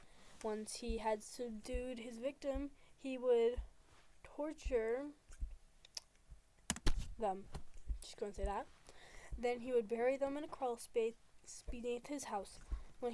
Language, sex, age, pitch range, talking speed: English, female, 10-29, 220-275 Hz, 130 wpm